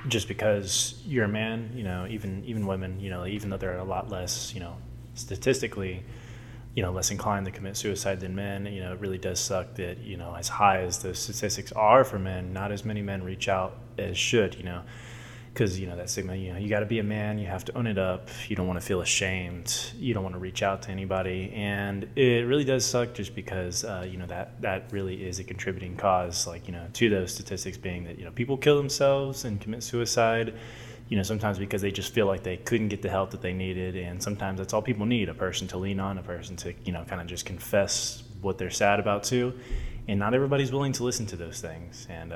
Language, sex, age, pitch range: English, male, 20-39, 95-120 Hz